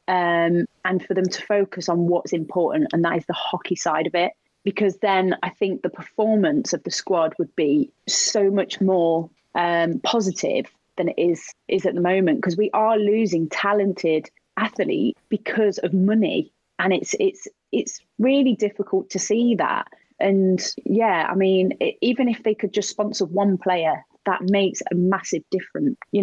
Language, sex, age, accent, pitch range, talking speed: English, female, 30-49, British, 175-215 Hz, 175 wpm